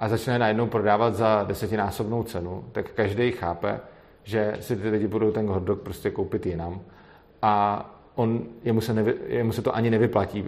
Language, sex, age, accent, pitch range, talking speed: Czech, male, 40-59, native, 105-120 Hz, 170 wpm